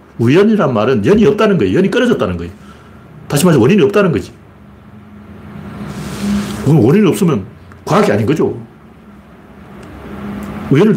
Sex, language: male, Korean